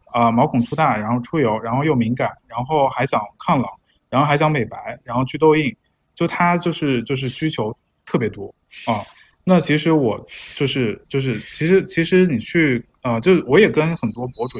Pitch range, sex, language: 115-150 Hz, male, Chinese